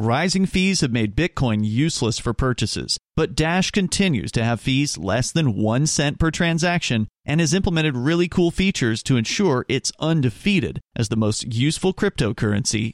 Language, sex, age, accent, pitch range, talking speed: English, male, 40-59, American, 115-155 Hz, 160 wpm